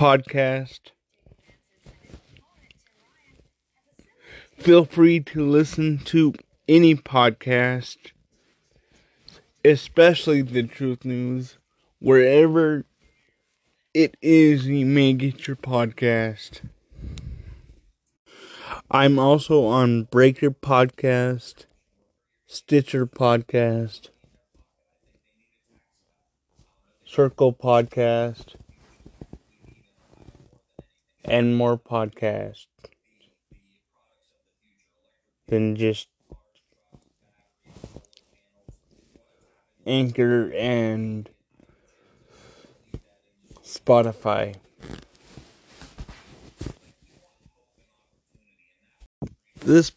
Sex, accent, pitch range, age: male, American, 115-150 Hz, 30-49